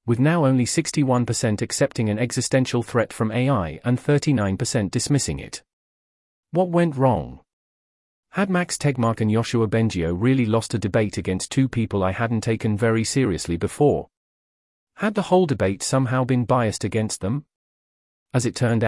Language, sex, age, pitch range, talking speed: English, male, 40-59, 110-140 Hz, 155 wpm